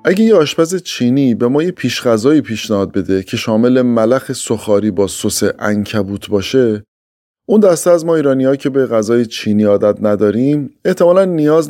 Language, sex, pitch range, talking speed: Persian, male, 105-150 Hz, 165 wpm